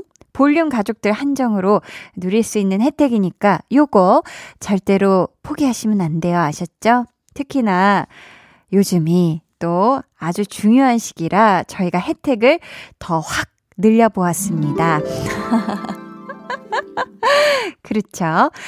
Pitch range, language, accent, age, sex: 195-285 Hz, Korean, native, 20-39, female